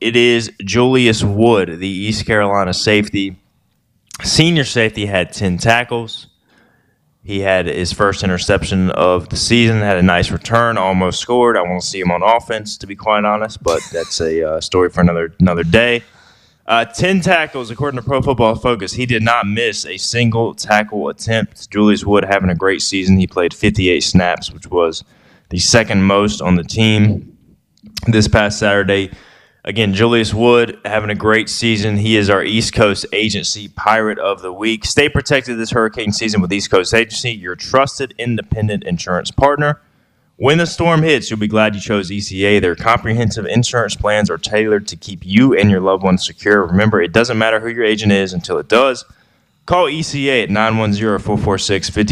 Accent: American